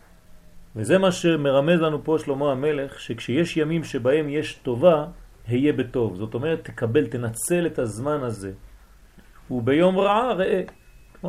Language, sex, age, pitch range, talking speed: French, male, 40-59, 120-170 Hz, 130 wpm